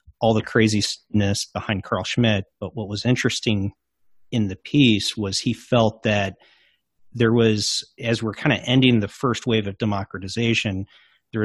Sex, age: male, 40-59